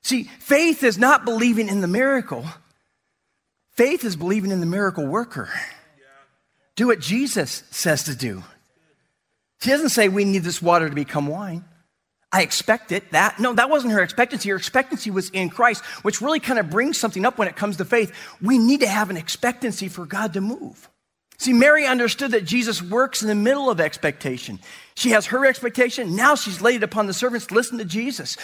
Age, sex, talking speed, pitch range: 40-59, male, 195 wpm, 190-260 Hz